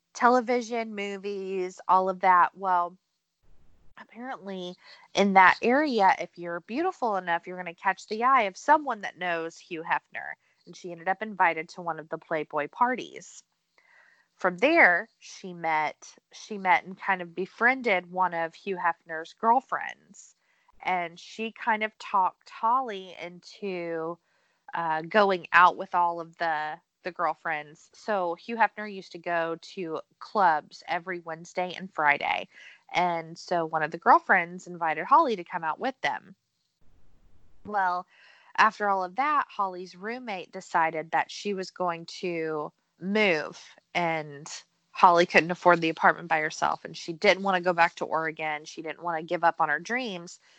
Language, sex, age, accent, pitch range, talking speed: English, female, 20-39, American, 170-205 Hz, 160 wpm